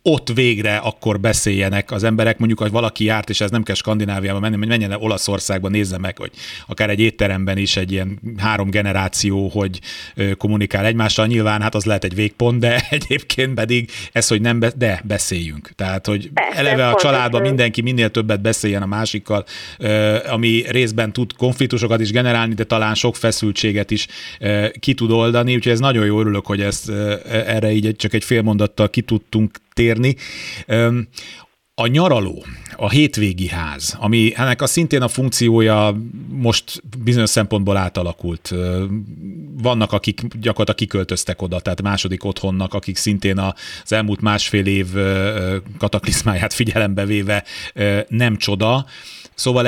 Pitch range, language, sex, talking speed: 105-125 Hz, Hungarian, male, 145 wpm